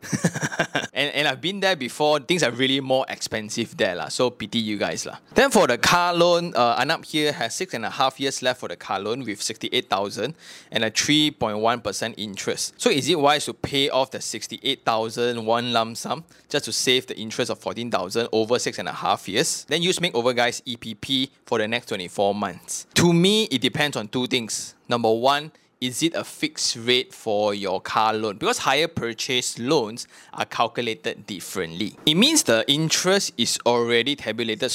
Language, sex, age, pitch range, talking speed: English, male, 20-39, 115-145 Hz, 175 wpm